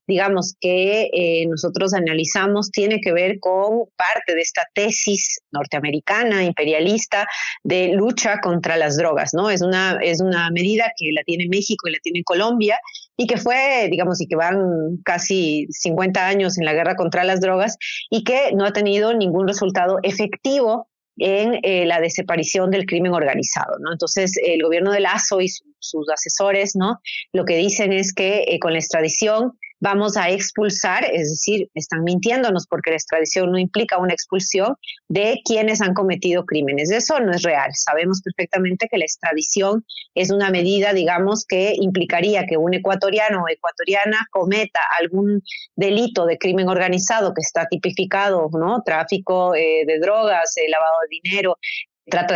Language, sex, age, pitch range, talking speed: Spanish, female, 30-49, 170-210 Hz, 165 wpm